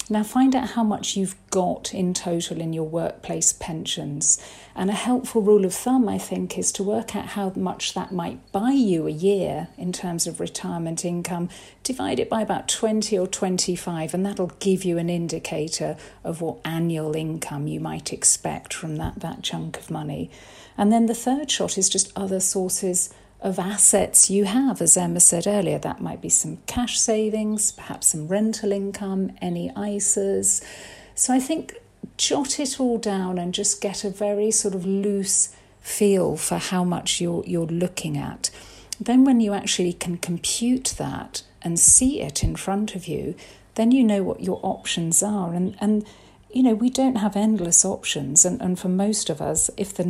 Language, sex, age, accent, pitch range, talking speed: English, female, 50-69, British, 170-215 Hz, 185 wpm